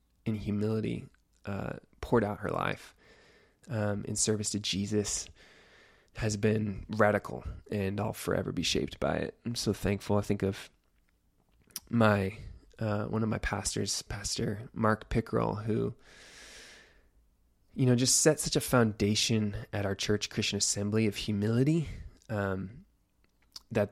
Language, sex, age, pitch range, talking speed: English, male, 20-39, 100-110 Hz, 135 wpm